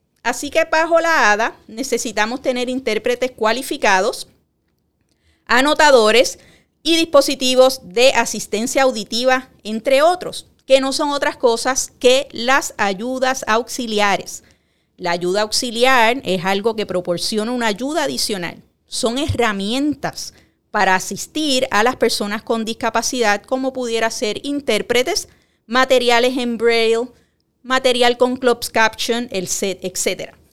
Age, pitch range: 30-49, 215-265 Hz